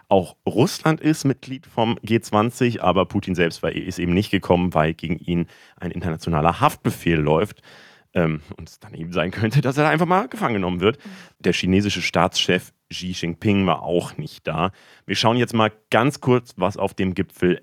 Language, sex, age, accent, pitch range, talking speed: German, male, 40-59, German, 90-115 Hz, 175 wpm